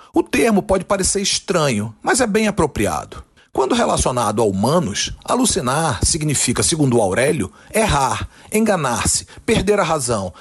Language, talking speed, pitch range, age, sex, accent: Portuguese, 125 wpm, 125-200 Hz, 40-59, male, Brazilian